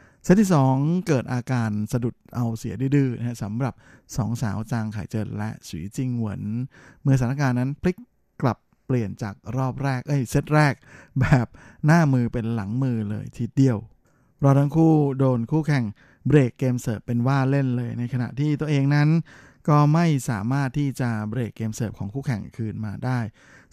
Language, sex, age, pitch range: Thai, male, 20-39, 115-140 Hz